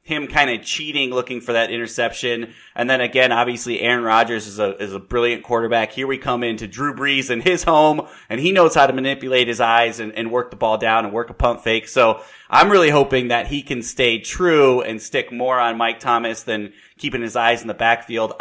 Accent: American